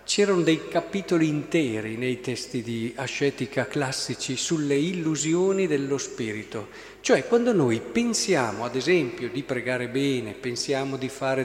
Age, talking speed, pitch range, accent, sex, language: 50-69, 130 wpm, 135-175 Hz, native, male, Italian